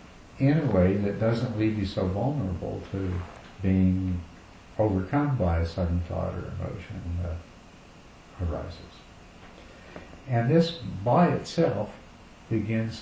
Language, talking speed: English, 115 wpm